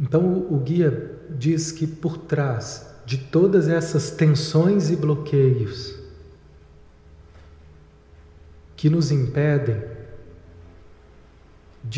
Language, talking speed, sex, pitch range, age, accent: Portuguese, 85 wpm, male, 100-150 Hz, 40-59, Brazilian